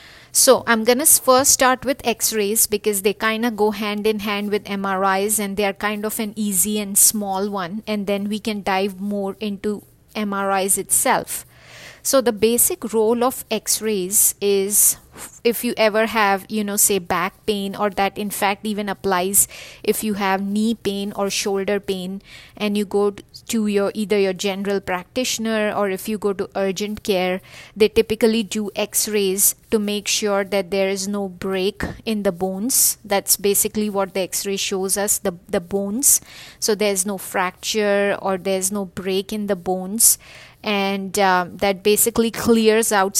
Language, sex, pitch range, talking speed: English, female, 195-215 Hz, 175 wpm